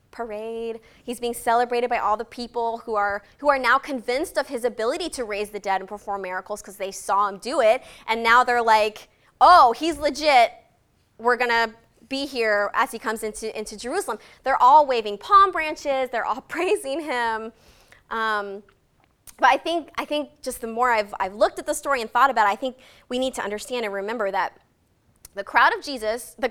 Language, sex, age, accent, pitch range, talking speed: English, female, 20-39, American, 215-270 Hz, 200 wpm